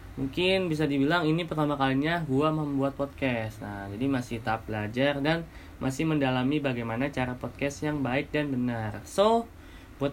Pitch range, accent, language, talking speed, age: 120-150 Hz, native, Indonesian, 155 wpm, 20-39